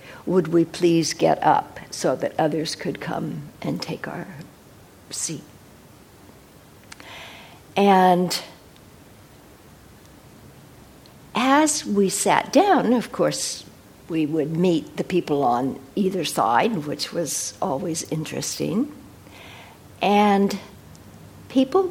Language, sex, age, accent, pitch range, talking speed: English, female, 60-79, American, 155-185 Hz, 95 wpm